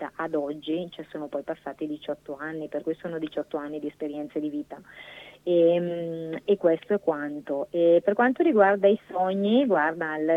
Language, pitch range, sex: Italian, 155-175 Hz, female